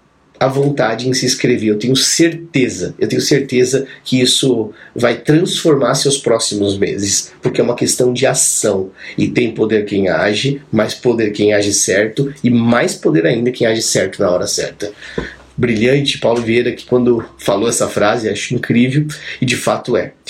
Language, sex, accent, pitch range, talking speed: Portuguese, male, Brazilian, 110-135 Hz, 170 wpm